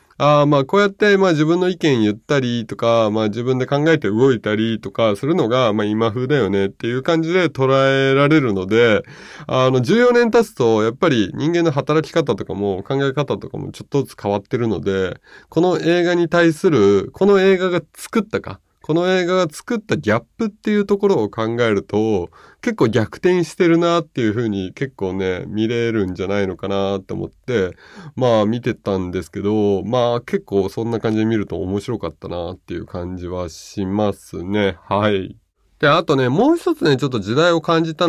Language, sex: Japanese, male